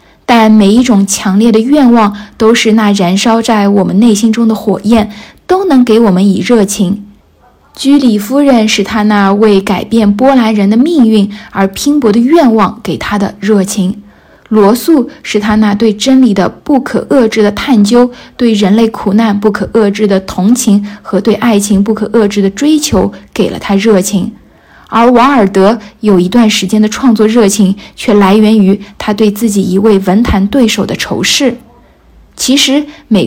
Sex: female